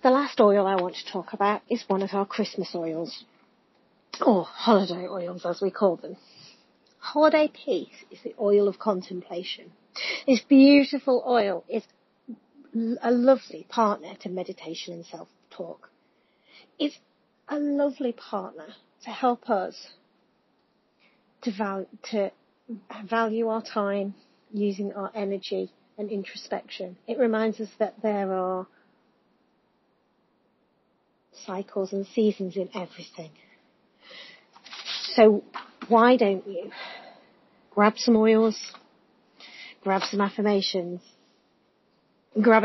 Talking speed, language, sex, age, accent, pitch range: 110 wpm, English, female, 40-59, British, 190-235 Hz